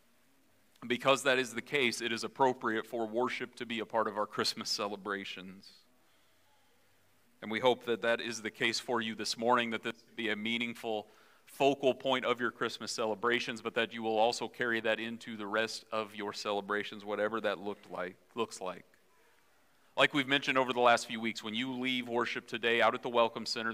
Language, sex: English, male